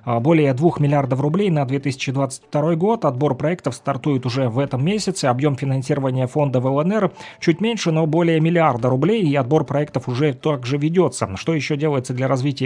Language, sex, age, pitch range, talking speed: Russian, male, 30-49, 130-160 Hz, 170 wpm